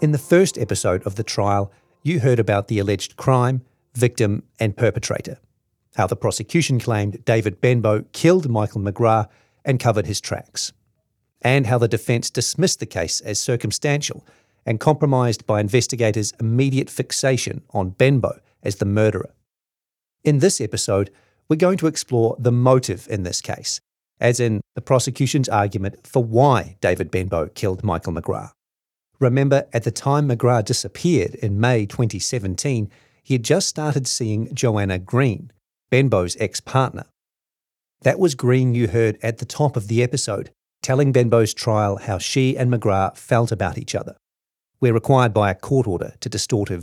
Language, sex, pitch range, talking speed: English, male, 105-130 Hz, 155 wpm